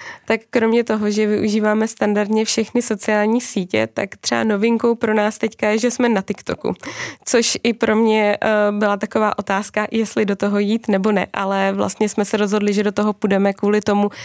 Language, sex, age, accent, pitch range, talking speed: Czech, female, 20-39, native, 205-225 Hz, 190 wpm